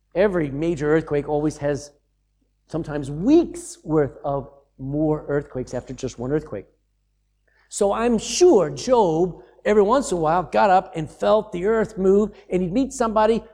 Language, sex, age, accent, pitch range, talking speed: English, male, 50-69, American, 140-200 Hz, 155 wpm